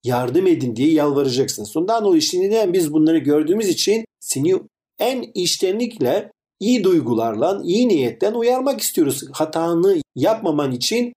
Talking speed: 125 wpm